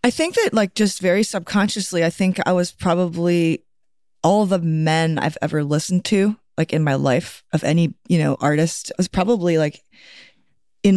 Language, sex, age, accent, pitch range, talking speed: English, female, 30-49, American, 150-185 Hz, 175 wpm